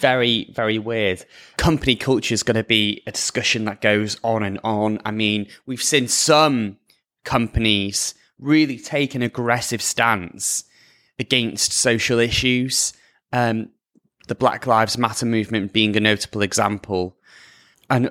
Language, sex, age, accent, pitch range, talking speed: English, male, 20-39, British, 105-135 Hz, 135 wpm